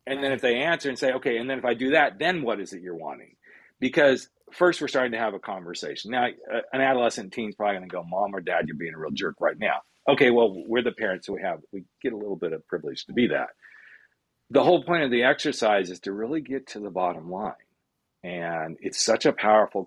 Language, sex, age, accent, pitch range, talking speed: English, male, 40-59, American, 95-135 Hz, 255 wpm